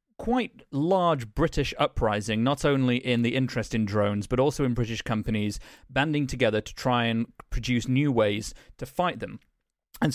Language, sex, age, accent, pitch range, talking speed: English, male, 30-49, British, 110-135 Hz, 165 wpm